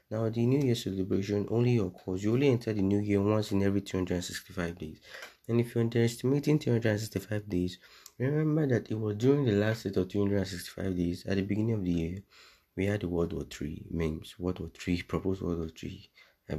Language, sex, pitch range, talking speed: English, male, 90-110 Hz, 205 wpm